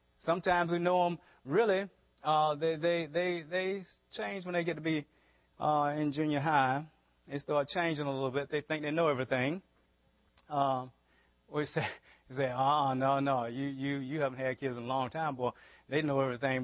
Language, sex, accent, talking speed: English, male, American, 190 wpm